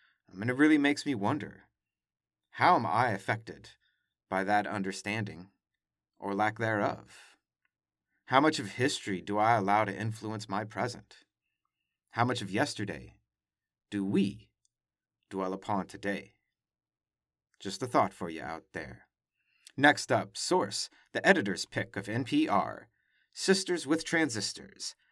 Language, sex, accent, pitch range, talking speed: English, male, American, 100-145 Hz, 130 wpm